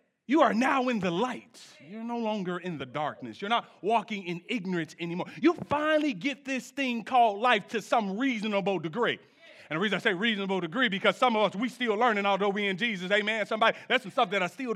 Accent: American